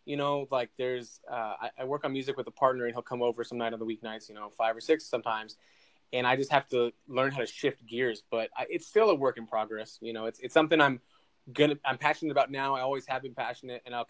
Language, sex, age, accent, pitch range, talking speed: English, male, 20-39, American, 120-145 Hz, 275 wpm